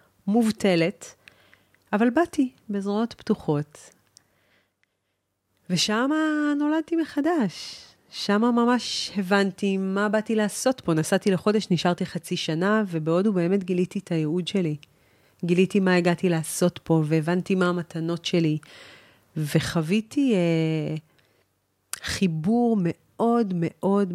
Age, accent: 30-49, native